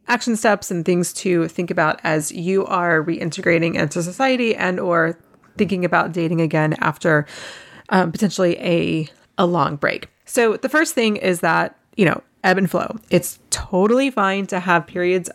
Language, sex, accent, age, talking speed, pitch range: English, female, American, 30-49, 165 wpm, 165-195 Hz